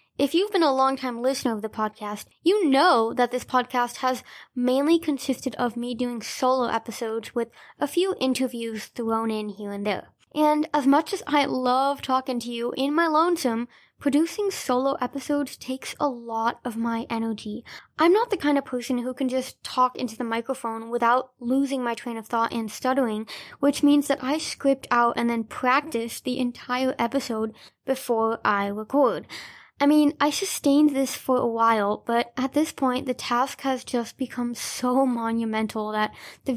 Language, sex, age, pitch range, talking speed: English, female, 10-29, 235-285 Hz, 180 wpm